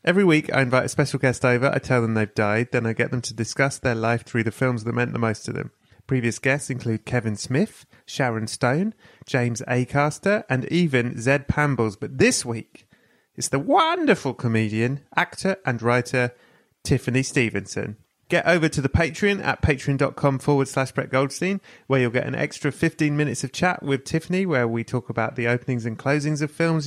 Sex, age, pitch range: male, 30-49, 120-145 Hz